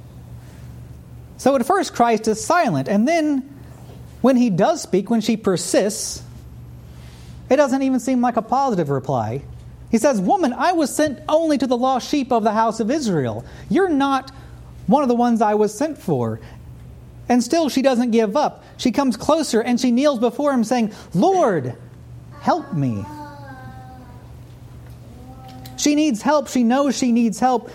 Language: English